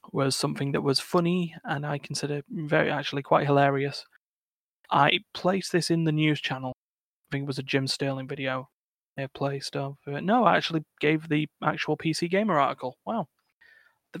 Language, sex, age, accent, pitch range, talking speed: English, male, 20-39, British, 135-165 Hz, 180 wpm